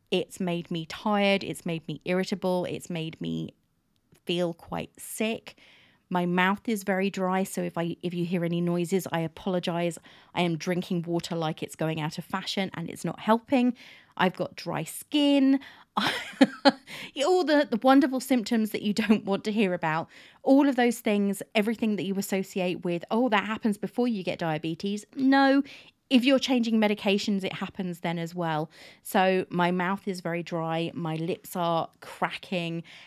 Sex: female